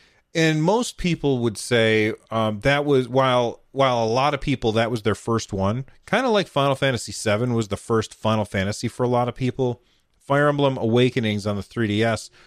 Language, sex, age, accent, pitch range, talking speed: English, male, 30-49, American, 110-140 Hz, 195 wpm